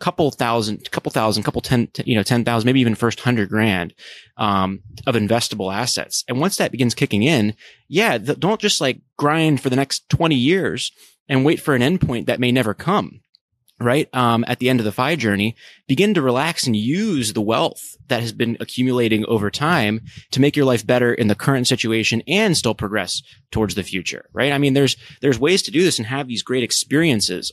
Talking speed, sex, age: 210 wpm, male, 30-49